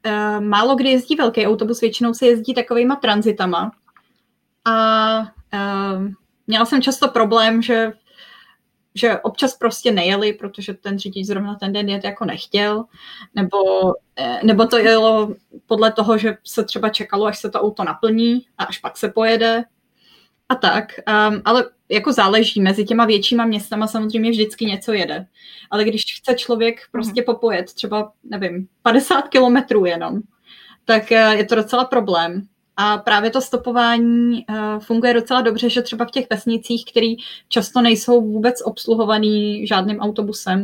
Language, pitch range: Czech, 210-235 Hz